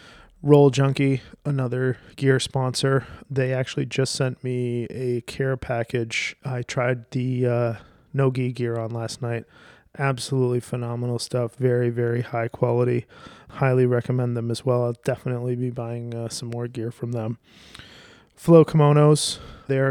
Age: 20-39